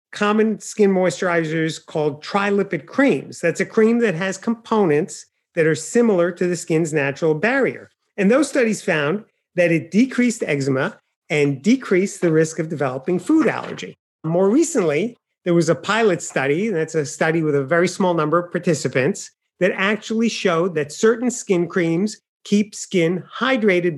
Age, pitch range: 40-59, 160-220 Hz